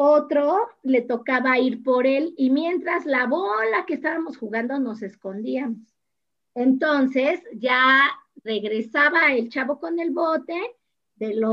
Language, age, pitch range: Spanish, 40-59, 230-325 Hz